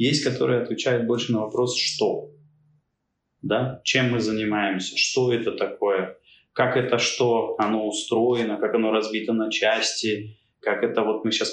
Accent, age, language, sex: native, 20-39, Russian, male